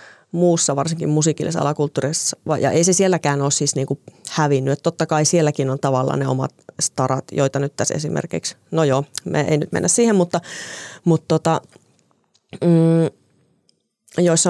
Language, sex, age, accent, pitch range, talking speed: Finnish, female, 30-49, native, 145-175 Hz, 150 wpm